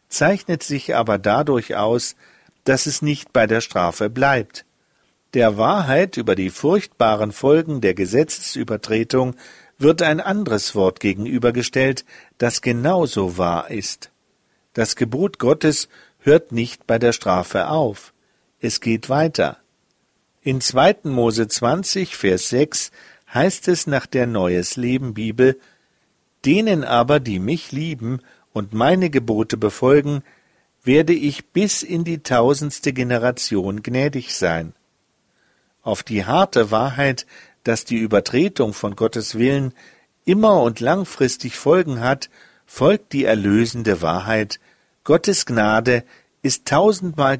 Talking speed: 120 wpm